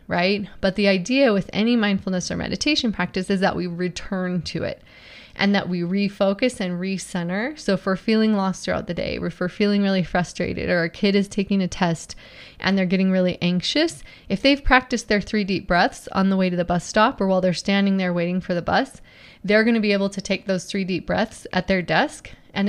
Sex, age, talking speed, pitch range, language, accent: female, 20-39, 225 wpm, 180-210 Hz, English, American